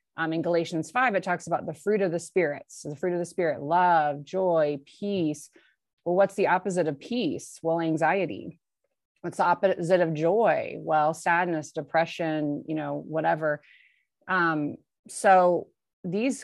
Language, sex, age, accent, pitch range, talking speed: English, female, 30-49, American, 155-190 Hz, 155 wpm